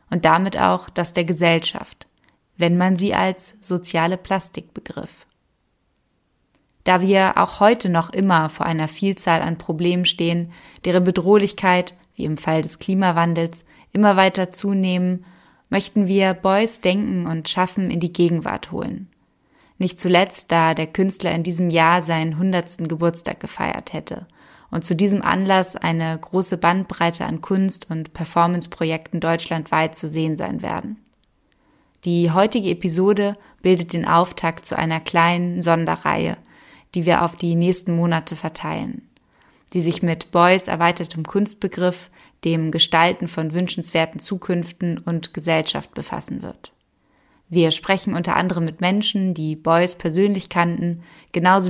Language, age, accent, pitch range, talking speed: German, 20-39, German, 165-185 Hz, 135 wpm